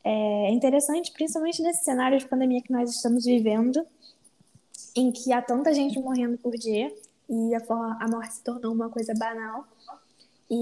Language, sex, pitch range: Portuguese, female, 230-260 Hz